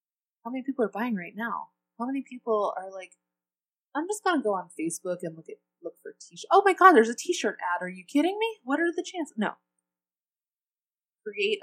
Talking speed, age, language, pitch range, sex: 220 wpm, 20-39, English, 155-220 Hz, female